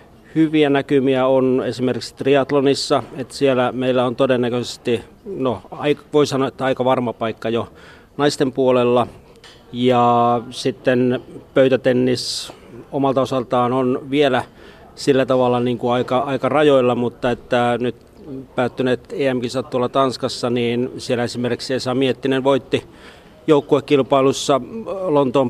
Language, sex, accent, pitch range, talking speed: Finnish, male, native, 125-135 Hz, 115 wpm